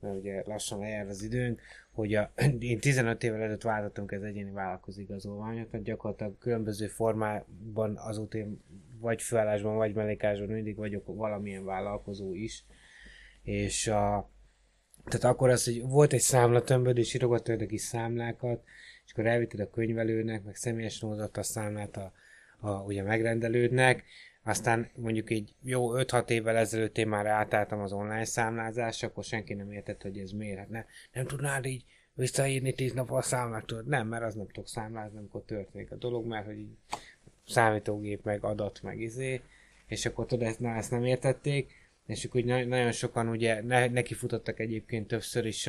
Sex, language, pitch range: male, Hungarian, 105-120 Hz